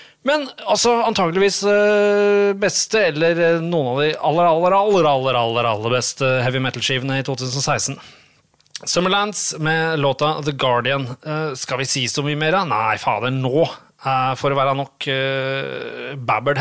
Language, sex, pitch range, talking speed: English, male, 130-165 Hz, 135 wpm